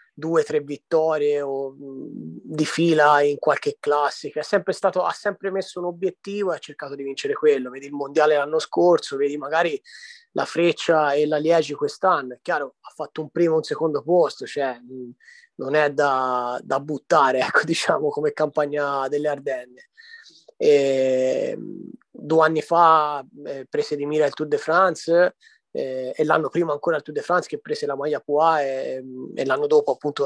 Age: 30-49